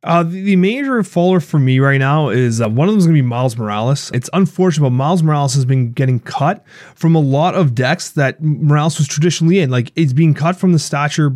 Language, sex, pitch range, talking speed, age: English, male, 135-185 Hz, 245 wpm, 30-49